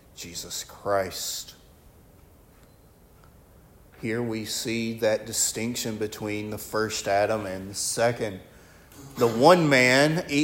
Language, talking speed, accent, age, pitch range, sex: English, 100 wpm, American, 40-59, 100-130 Hz, male